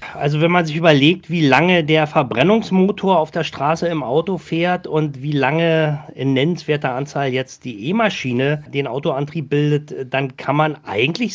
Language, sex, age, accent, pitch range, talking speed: German, male, 40-59, German, 130-165 Hz, 165 wpm